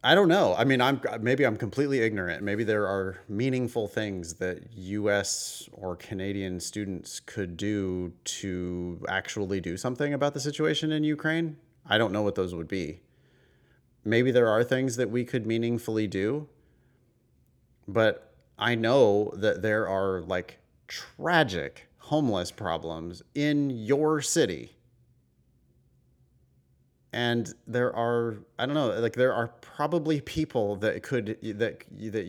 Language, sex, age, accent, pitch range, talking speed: English, male, 30-49, American, 105-130 Hz, 140 wpm